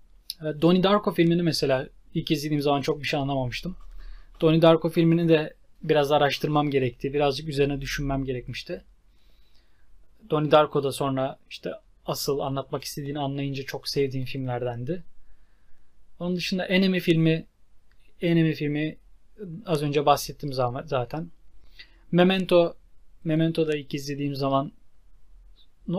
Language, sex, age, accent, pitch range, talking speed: Turkish, male, 30-49, native, 135-170 Hz, 115 wpm